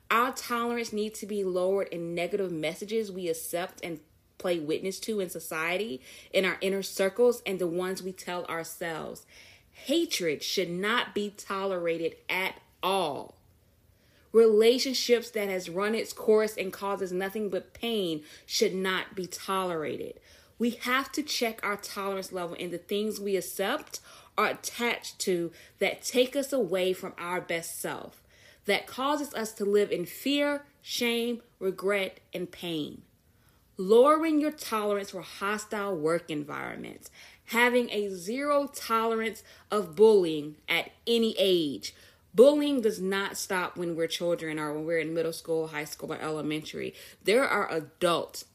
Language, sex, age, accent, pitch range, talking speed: English, female, 20-39, American, 170-225 Hz, 145 wpm